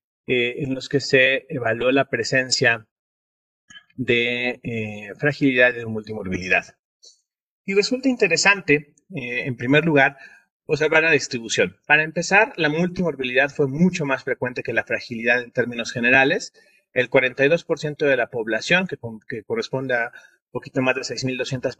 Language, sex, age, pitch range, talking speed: Spanish, male, 30-49, 120-165 Hz, 145 wpm